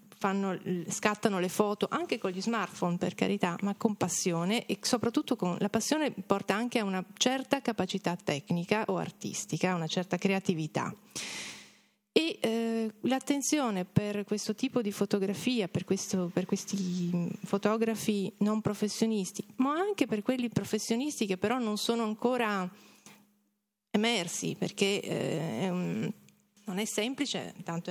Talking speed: 140 wpm